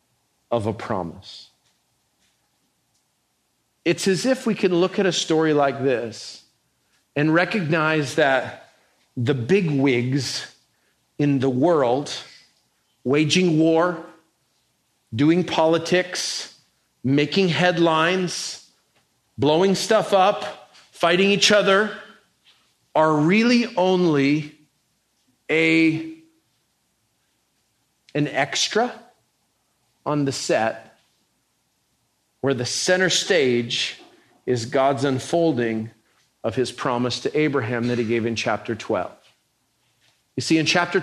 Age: 40-59